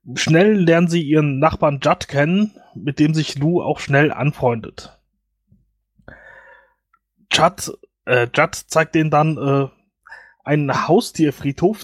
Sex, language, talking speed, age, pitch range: male, German, 115 wpm, 20-39, 140-175 Hz